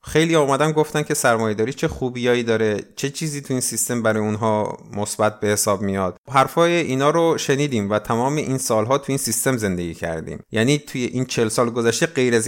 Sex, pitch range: male, 100-140 Hz